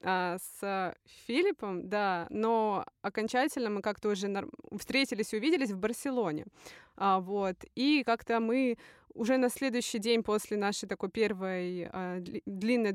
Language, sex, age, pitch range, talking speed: Russian, female, 20-39, 205-255 Hz, 120 wpm